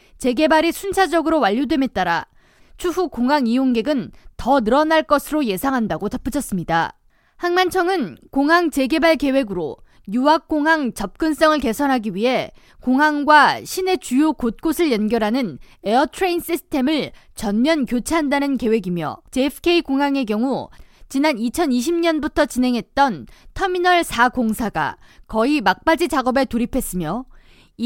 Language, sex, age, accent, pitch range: Korean, female, 20-39, native, 240-320 Hz